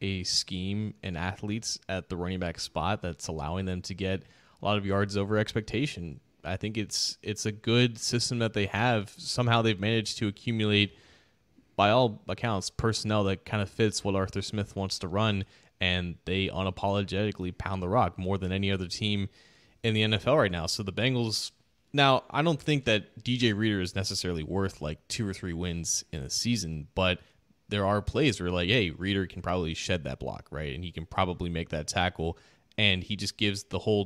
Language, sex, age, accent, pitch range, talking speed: English, male, 20-39, American, 90-110 Hz, 200 wpm